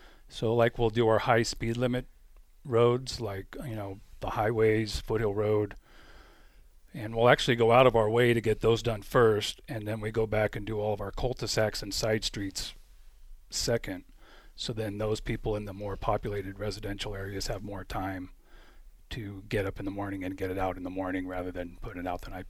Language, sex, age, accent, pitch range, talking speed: English, male, 40-59, American, 100-110 Hz, 210 wpm